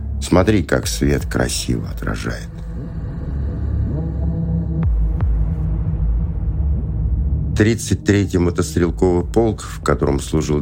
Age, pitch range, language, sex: 60-79, 70-85 Hz, Russian, male